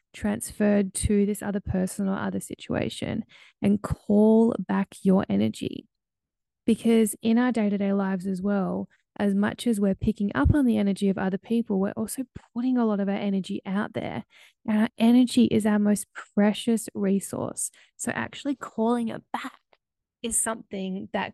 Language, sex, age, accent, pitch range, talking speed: English, female, 10-29, Australian, 195-215 Hz, 165 wpm